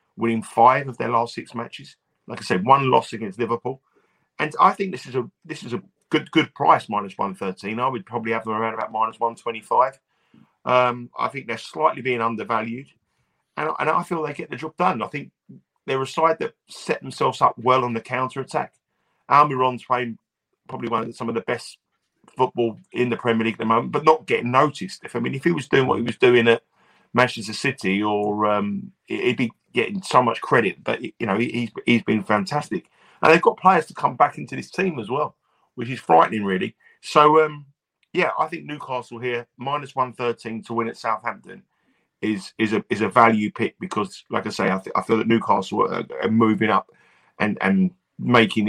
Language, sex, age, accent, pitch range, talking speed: English, male, 40-59, British, 110-130 Hz, 215 wpm